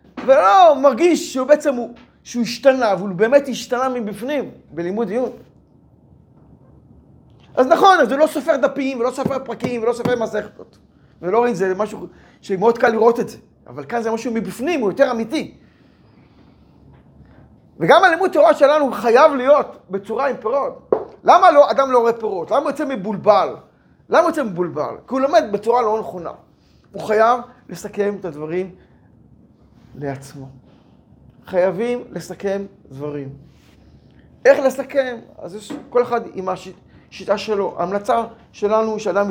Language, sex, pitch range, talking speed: Hebrew, male, 180-250 Hz, 145 wpm